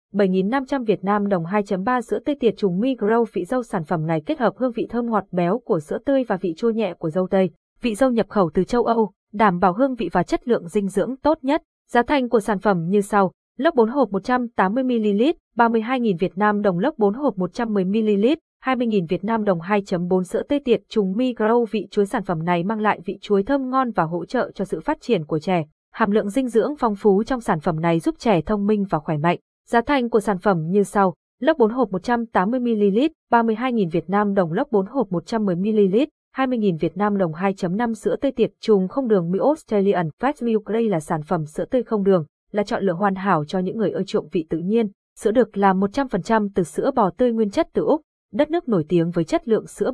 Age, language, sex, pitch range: 20-39, Vietnamese, female, 190-240 Hz